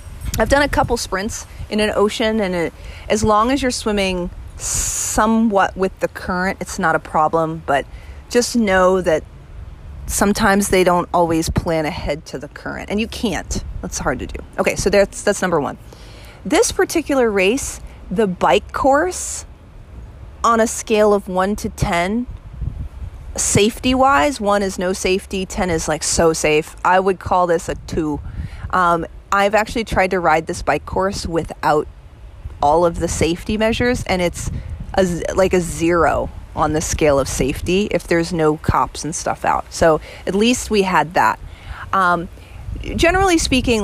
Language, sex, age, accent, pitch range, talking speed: English, female, 30-49, American, 165-215 Hz, 165 wpm